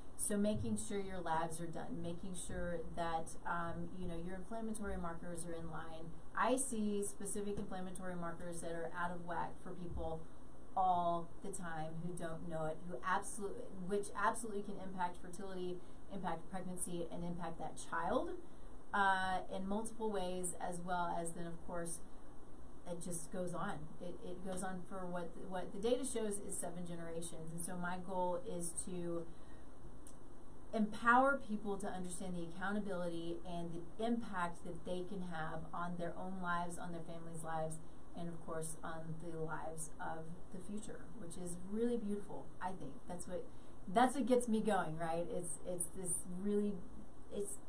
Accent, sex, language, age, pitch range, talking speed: American, female, English, 30-49, 170-205 Hz, 170 wpm